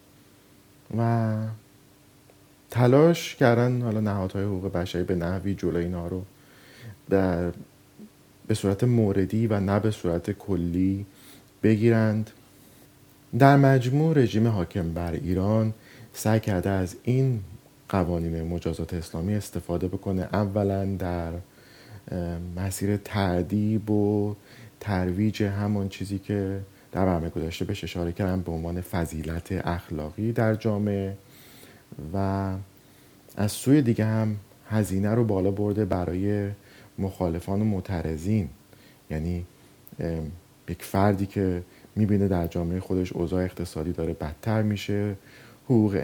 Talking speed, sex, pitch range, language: 110 wpm, male, 90-110 Hz, Persian